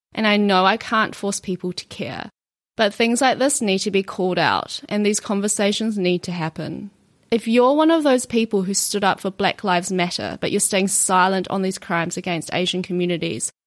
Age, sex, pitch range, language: 20-39, female, 190-245 Hz, English